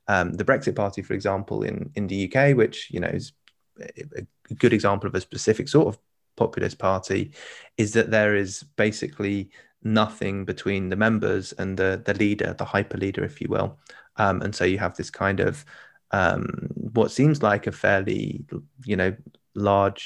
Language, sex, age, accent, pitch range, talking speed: English, male, 20-39, British, 95-115 Hz, 180 wpm